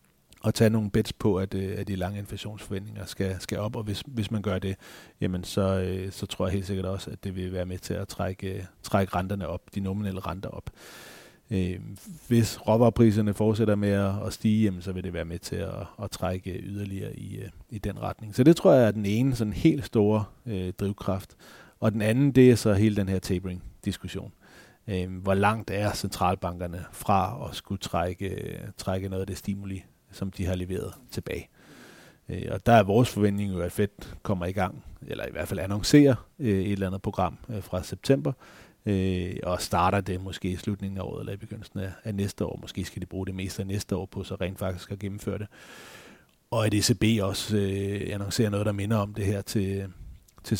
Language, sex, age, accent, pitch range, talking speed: Danish, male, 30-49, native, 95-110 Hz, 200 wpm